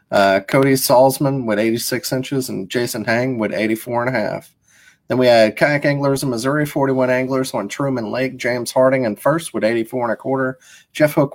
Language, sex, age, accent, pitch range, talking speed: English, male, 30-49, American, 110-140 Hz, 195 wpm